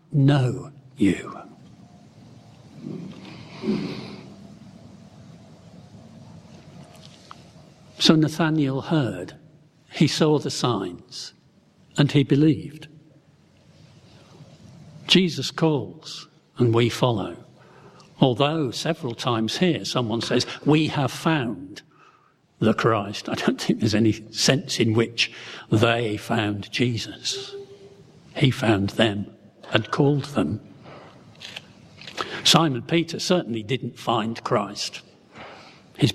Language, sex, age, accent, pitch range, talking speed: English, male, 60-79, British, 115-160 Hz, 85 wpm